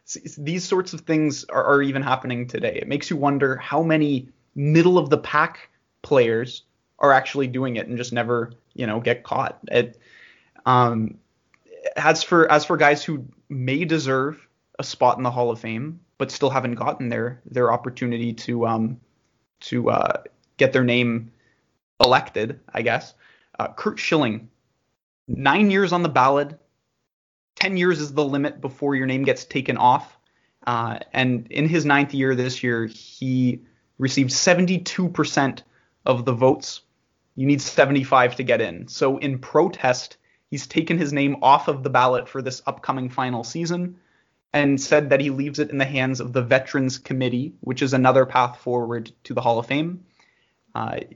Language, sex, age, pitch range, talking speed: English, male, 20-39, 125-150 Hz, 170 wpm